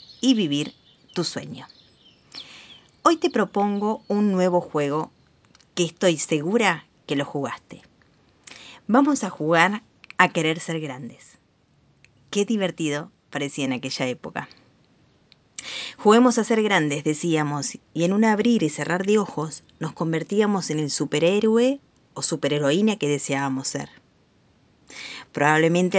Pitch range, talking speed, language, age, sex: 145-185 Hz, 120 wpm, Spanish, 20-39, female